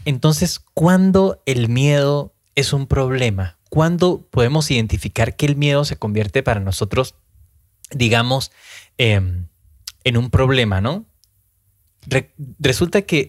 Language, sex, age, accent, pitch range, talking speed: Spanish, male, 20-39, Mexican, 100-150 Hz, 110 wpm